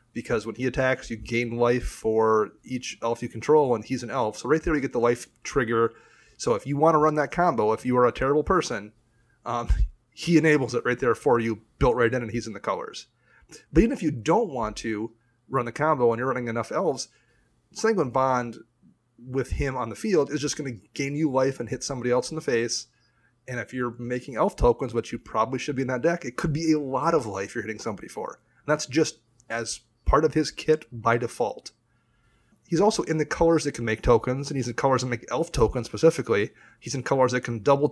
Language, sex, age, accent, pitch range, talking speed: English, male, 30-49, American, 115-150 Hz, 235 wpm